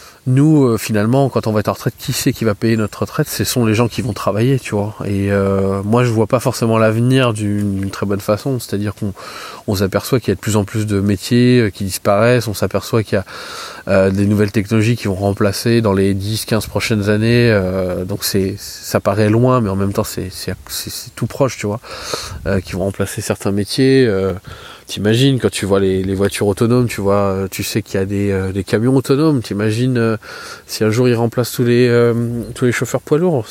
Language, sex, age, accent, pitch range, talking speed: French, male, 20-39, French, 100-120 Hz, 235 wpm